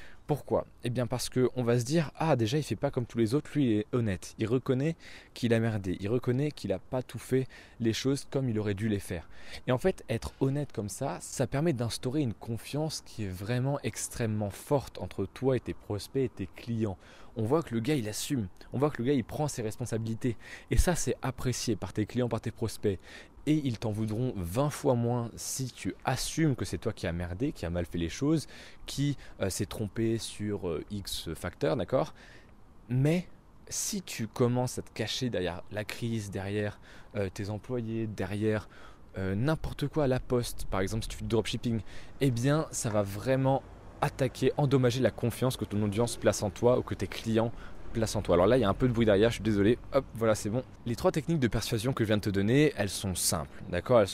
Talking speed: 230 wpm